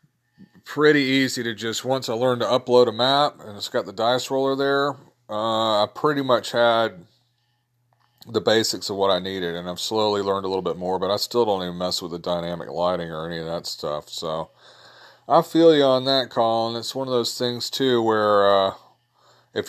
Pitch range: 100-125 Hz